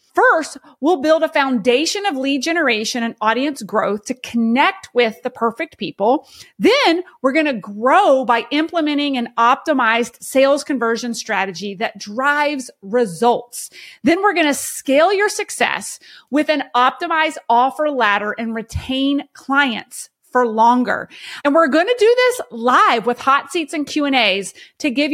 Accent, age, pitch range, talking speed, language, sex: American, 30-49, 235-310 Hz, 150 wpm, English, female